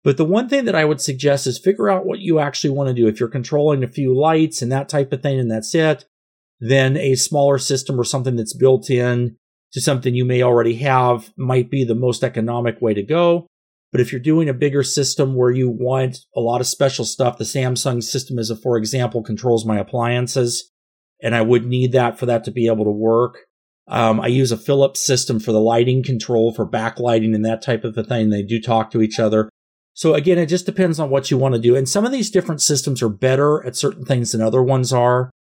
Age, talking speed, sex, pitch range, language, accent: 40-59, 235 wpm, male, 115-140 Hz, English, American